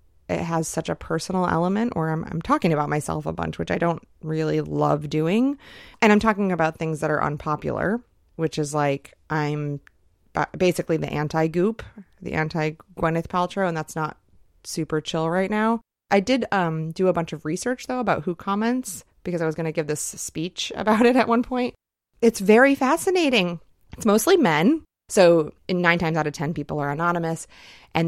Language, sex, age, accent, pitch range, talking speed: English, female, 30-49, American, 155-210 Hz, 190 wpm